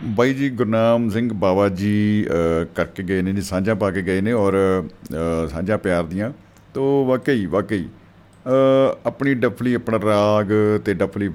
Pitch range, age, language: 95-130 Hz, 50-69, Punjabi